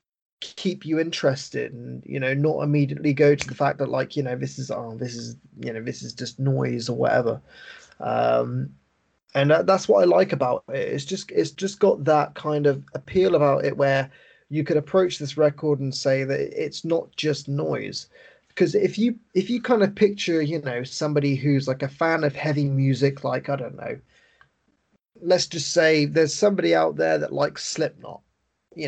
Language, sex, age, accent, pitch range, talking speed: English, male, 20-39, British, 135-165 Hz, 195 wpm